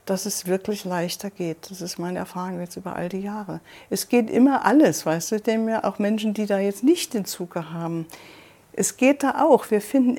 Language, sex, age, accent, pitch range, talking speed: German, female, 60-79, German, 195-250 Hz, 220 wpm